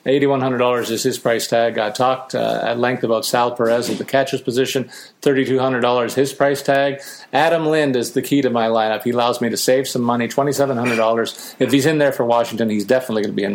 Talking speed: 220 wpm